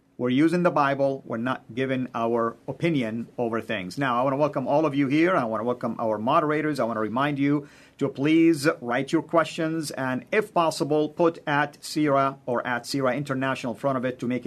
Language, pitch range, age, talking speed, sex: English, 125-150 Hz, 50-69, 210 wpm, male